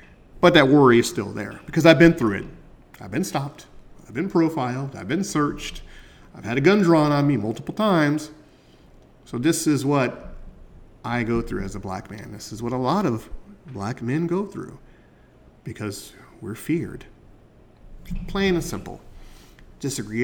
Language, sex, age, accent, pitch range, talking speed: English, male, 40-59, American, 105-150 Hz, 170 wpm